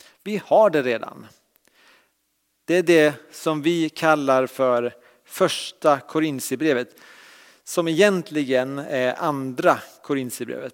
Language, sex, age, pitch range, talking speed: English, male, 40-59, 140-175 Hz, 100 wpm